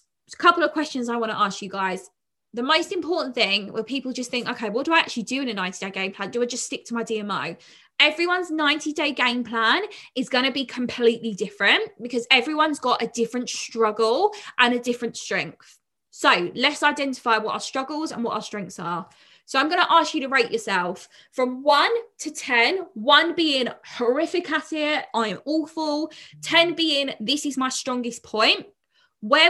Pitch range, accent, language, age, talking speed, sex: 230-305 Hz, British, English, 20-39, 200 wpm, female